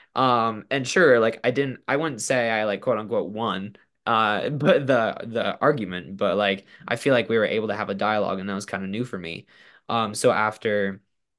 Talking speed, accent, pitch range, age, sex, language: 215 wpm, American, 100-110 Hz, 10-29, male, English